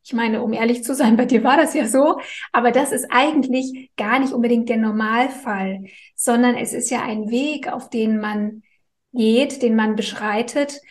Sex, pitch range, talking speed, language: female, 225-255 Hz, 185 wpm, German